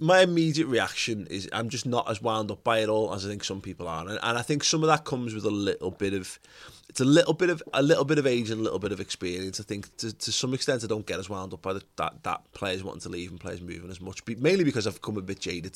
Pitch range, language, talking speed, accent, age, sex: 95-120 Hz, English, 305 wpm, British, 20-39, male